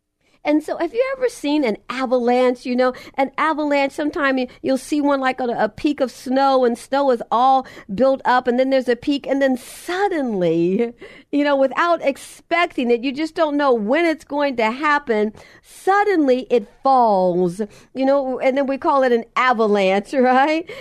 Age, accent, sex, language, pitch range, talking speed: 50-69, American, female, English, 255-300 Hz, 180 wpm